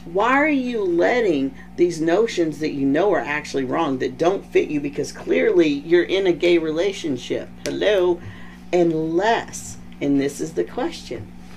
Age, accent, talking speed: 40-59, American, 155 wpm